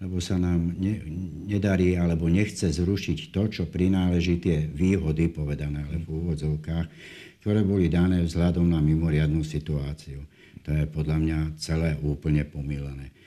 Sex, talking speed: male, 140 wpm